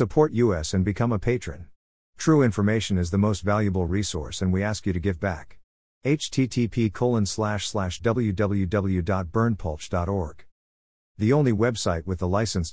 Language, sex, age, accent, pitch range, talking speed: English, male, 50-69, American, 85-115 Hz, 135 wpm